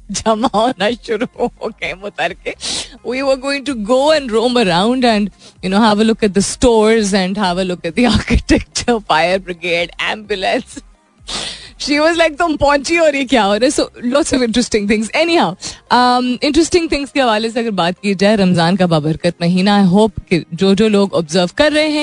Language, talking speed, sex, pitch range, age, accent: Hindi, 95 wpm, female, 165-230 Hz, 20-39, native